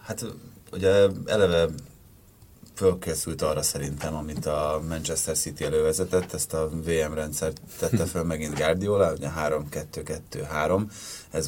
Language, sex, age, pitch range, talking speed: Hungarian, male, 30-49, 80-95 Hz, 115 wpm